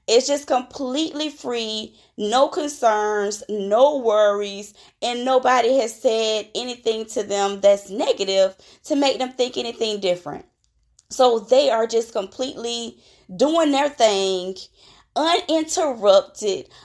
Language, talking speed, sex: English, 115 wpm, female